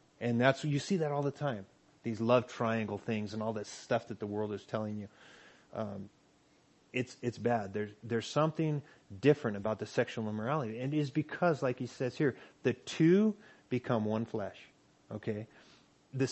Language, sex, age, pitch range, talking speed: English, male, 30-49, 110-145 Hz, 175 wpm